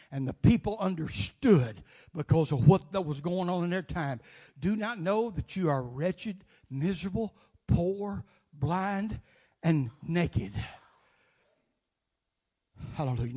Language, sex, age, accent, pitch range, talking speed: English, male, 60-79, American, 145-200 Hz, 120 wpm